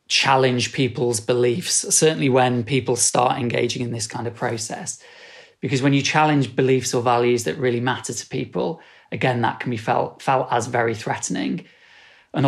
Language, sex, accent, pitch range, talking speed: English, male, British, 120-145 Hz, 170 wpm